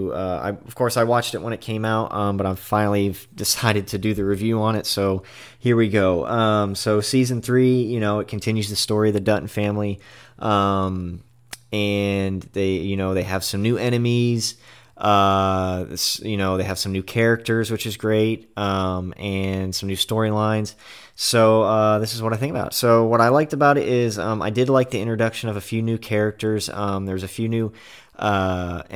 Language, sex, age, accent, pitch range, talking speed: English, male, 30-49, American, 95-110 Hz, 205 wpm